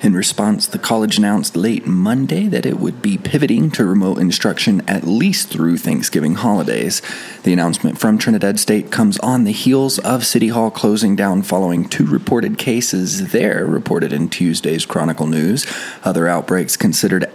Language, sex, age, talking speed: English, male, 20-39, 165 wpm